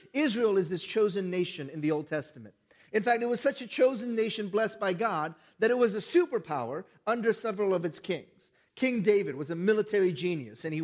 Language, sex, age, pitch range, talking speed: English, male, 40-59, 175-235 Hz, 210 wpm